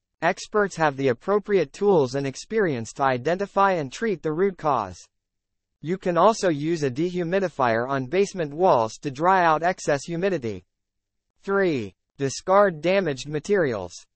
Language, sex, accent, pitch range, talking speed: English, male, American, 125-190 Hz, 135 wpm